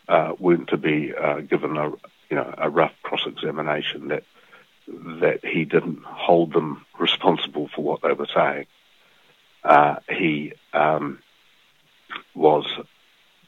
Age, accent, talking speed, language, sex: 50-69, Australian, 130 wpm, English, male